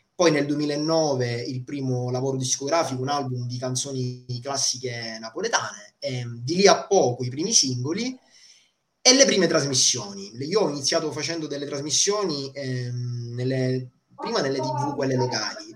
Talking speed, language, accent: 145 wpm, Italian, native